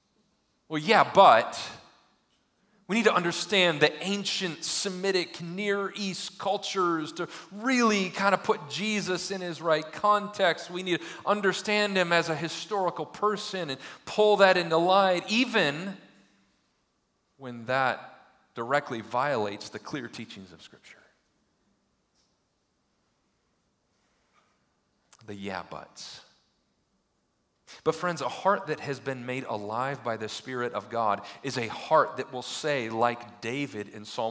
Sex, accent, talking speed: male, American, 130 wpm